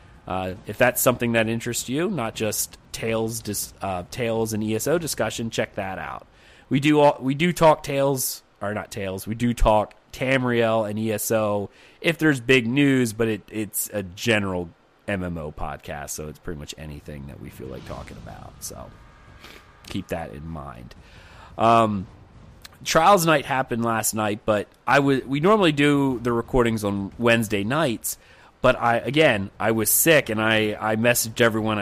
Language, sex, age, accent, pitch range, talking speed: English, male, 30-49, American, 100-130 Hz, 170 wpm